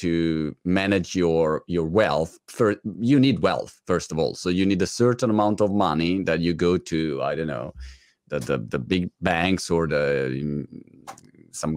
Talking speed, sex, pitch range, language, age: 180 wpm, male, 80-100 Hz, Italian, 30-49